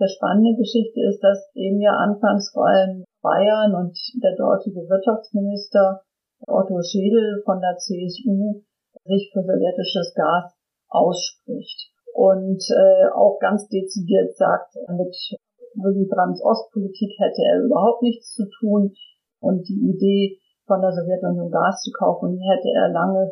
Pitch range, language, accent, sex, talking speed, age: 190-225 Hz, German, German, female, 135 wpm, 50-69